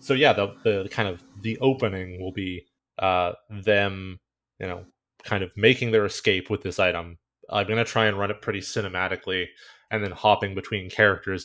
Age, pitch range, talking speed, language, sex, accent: 20-39, 95-115 Hz, 190 wpm, English, male, American